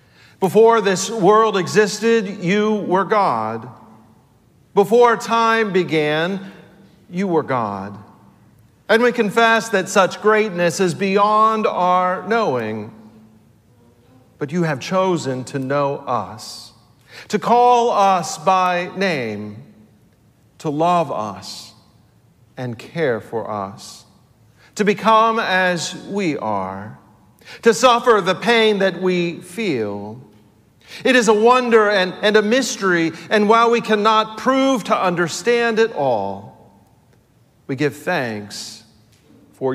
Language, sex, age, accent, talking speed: English, male, 50-69, American, 115 wpm